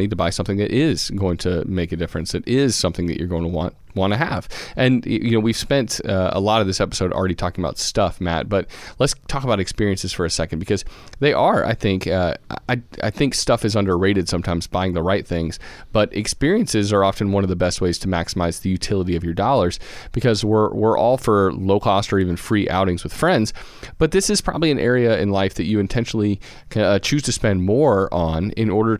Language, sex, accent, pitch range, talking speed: English, male, American, 90-115 Hz, 230 wpm